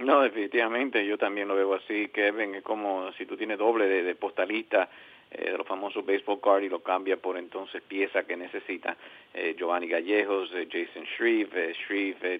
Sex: male